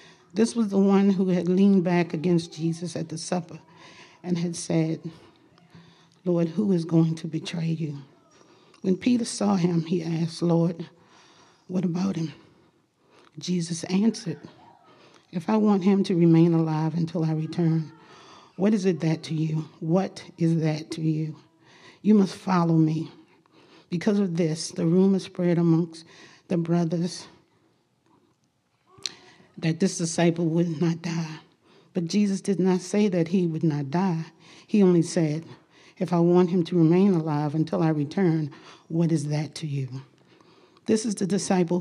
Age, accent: 40-59, American